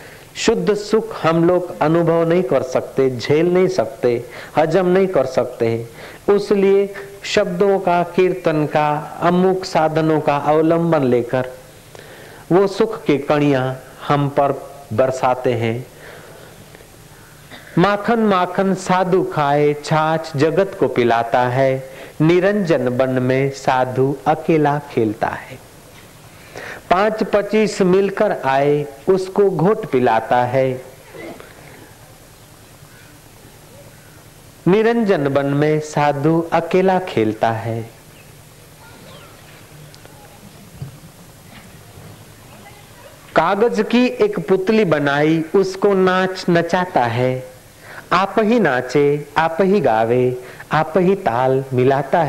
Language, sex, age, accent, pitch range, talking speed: Hindi, male, 50-69, native, 130-180 Hz, 95 wpm